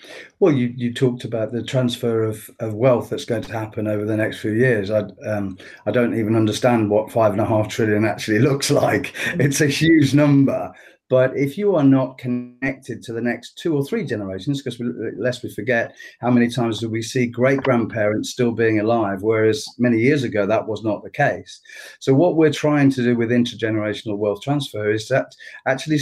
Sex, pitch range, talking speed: male, 110-135 Hz, 205 wpm